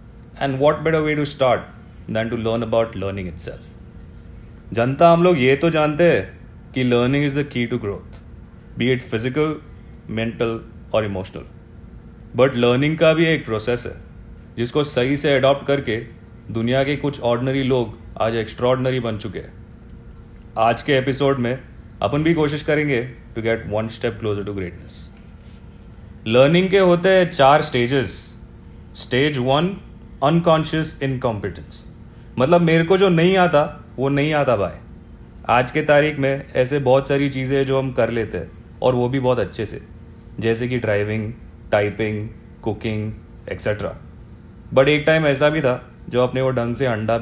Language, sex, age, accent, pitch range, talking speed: Hindi, male, 30-49, native, 110-140 Hz, 165 wpm